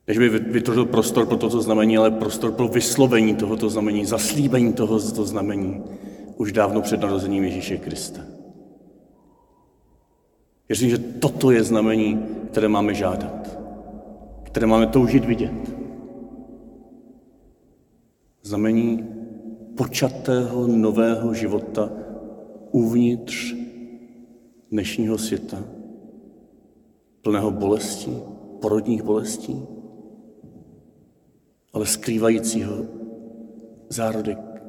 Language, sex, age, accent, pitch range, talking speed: Czech, male, 40-59, native, 110-120 Hz, 85 wpm